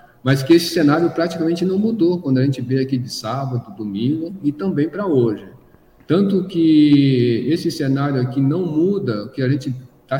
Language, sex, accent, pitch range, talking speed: Portuguese, male, Brazilian, 120-160 Hz, 180 wpm